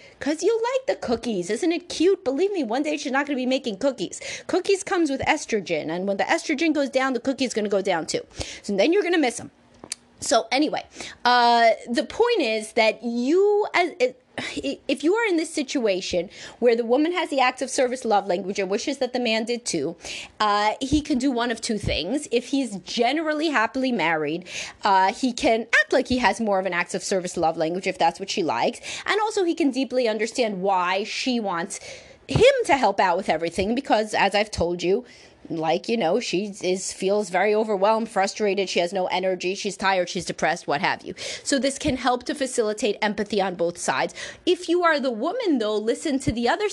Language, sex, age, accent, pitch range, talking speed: English, female, 30-49, American, 205-295 Hz, 215 wpm